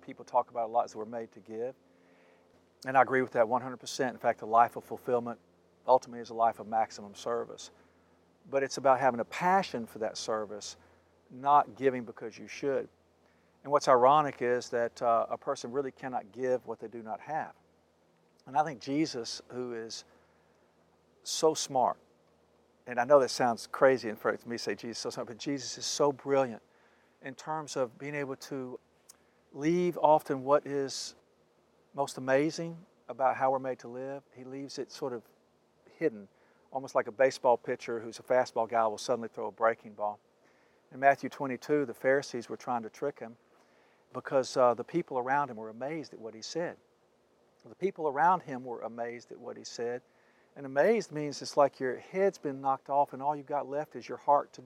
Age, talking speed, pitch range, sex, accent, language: 50-69, 195 wpm, 110-140 Hz, male, American, English